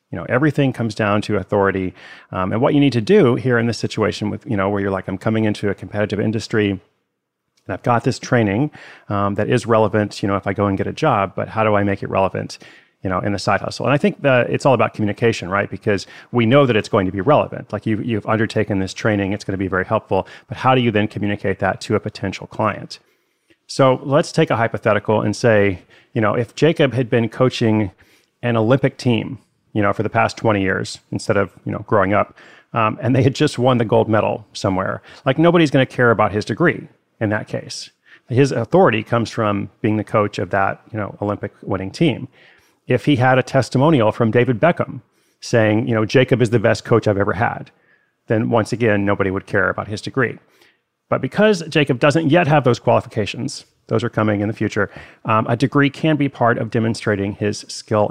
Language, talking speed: English, 225 wpm